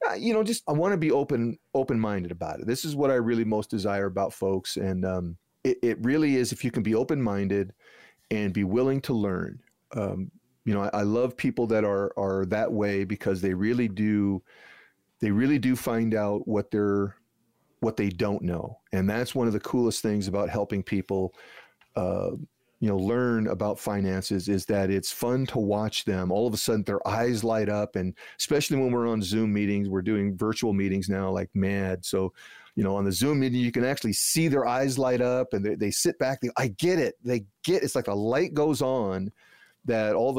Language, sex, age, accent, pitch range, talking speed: English, male, 40-59, American, 100-125 Hz, 215 wpm